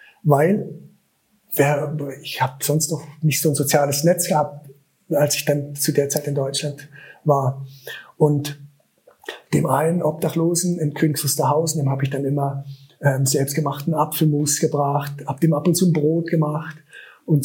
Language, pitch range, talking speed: German, 145-170 Hz, 145 wpm